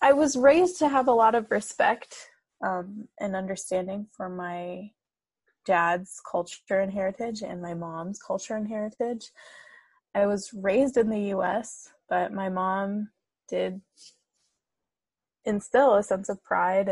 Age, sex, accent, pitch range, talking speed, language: 20-39, female, American, 185-250 Hz, 140 wpm, English